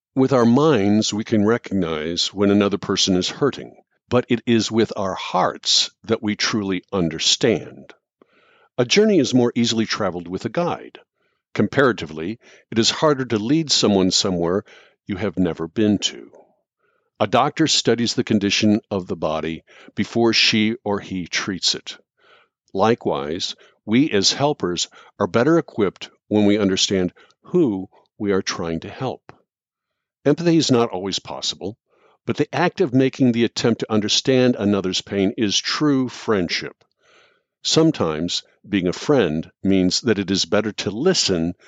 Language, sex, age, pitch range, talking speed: English, male, 50-69, 95-130 Hz, 150 wpm